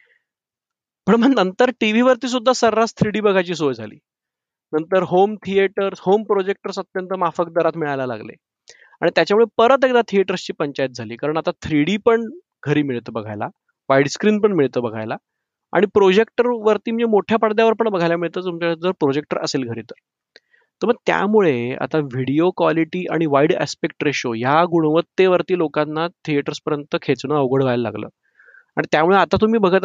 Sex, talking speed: male, 105 wpm